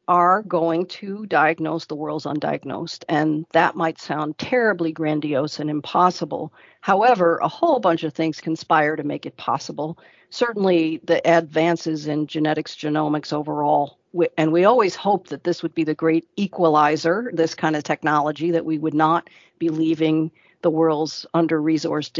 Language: English